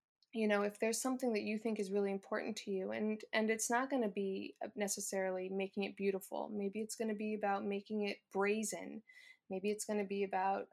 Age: 20-39